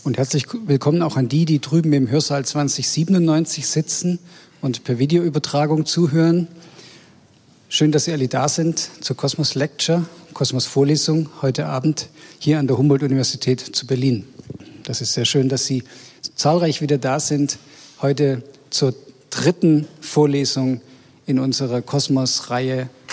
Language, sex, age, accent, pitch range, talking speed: German, male, 50-69, German, 135-165 Hz, 135 wpm